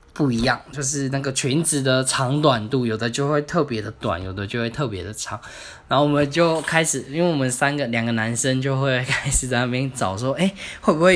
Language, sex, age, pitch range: Chinese, male, 10-29, 115-150 Hz